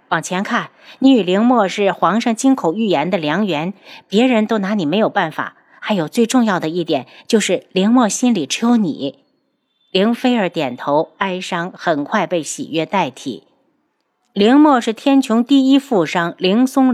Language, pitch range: Chinese, 180-255 Hz